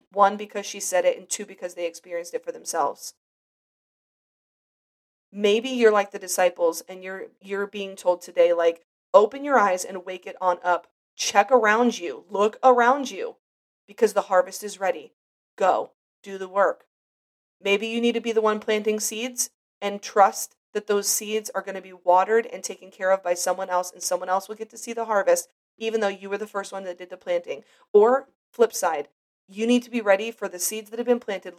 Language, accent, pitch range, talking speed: English, American, 185-235 Hz, 205 wpm